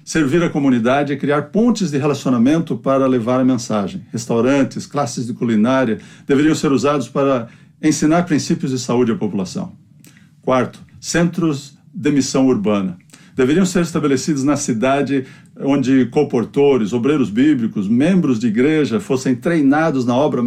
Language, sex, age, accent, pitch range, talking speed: Portuguese, male, 60-79, Brazilian, 130-170 Hz, 140 wpm